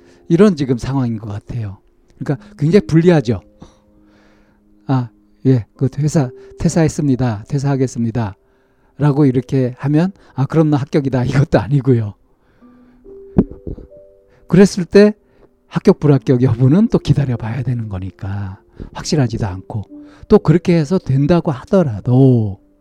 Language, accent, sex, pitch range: Korean, native, male, 105-145 Hz